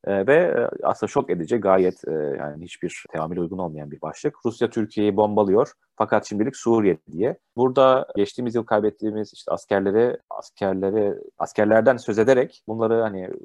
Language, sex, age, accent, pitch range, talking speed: Turkish, male, 30-49, native, 95-120 Hz, 140 wpm